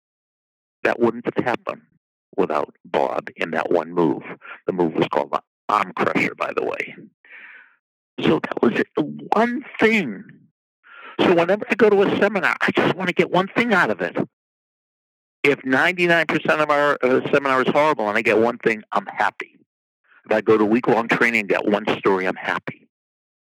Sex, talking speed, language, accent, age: male, 185 wpm, English, American, 60-79